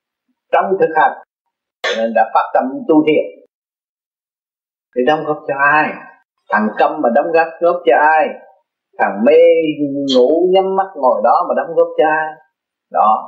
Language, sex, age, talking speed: Vietnamese, male, 30-49, 155 wpm